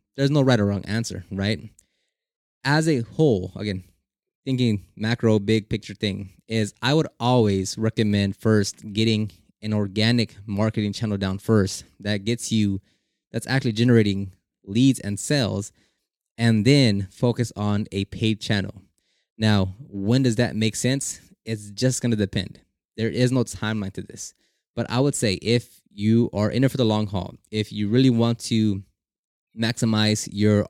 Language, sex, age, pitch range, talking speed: English, male, 20-39, 100-125 Hz, 160 wpm